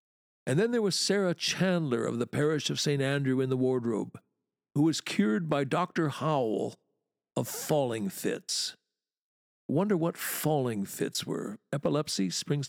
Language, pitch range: English, 120-160 Hz